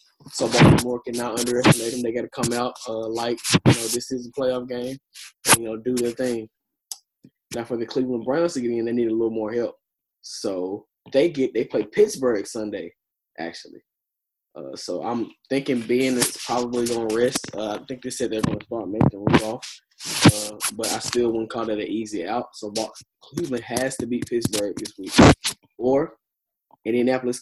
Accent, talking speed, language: American, 195 wpm, English